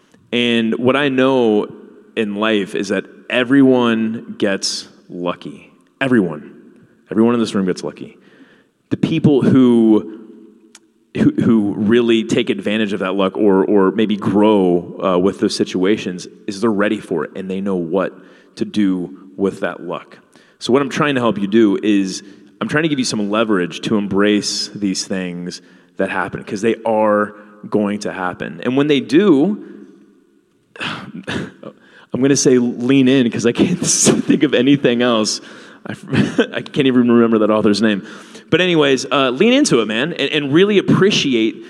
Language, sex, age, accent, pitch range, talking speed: English, male, 30-49, American, 100-130 Hz, 165 wpm